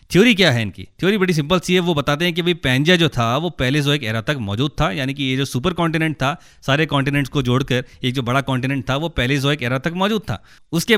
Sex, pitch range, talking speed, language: male, 130-155 Hz, 275 wpm, Hindi